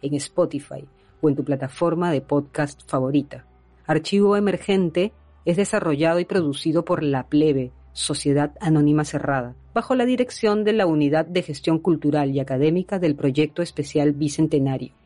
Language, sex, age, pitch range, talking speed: Spanish, female, 40-59, 145-185 Hz, 145 wpm